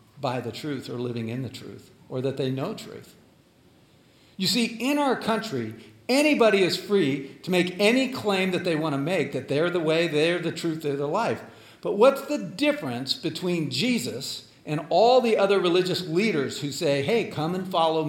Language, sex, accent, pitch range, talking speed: English, male, American, 140-200 Hz, 190 wpm